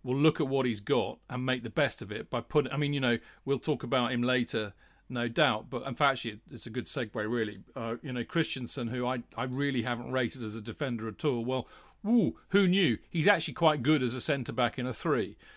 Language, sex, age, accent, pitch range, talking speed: English, male, 40-59, British, 120-150 Hz, 245 wpm